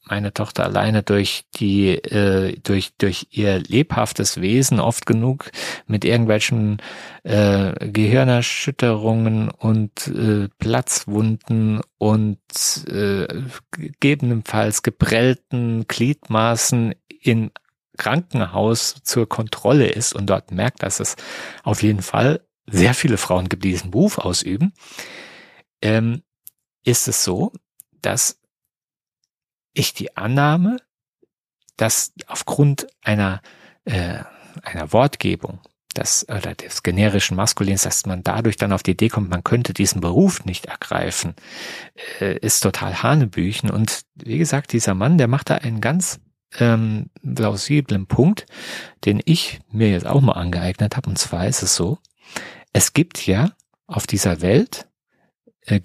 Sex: male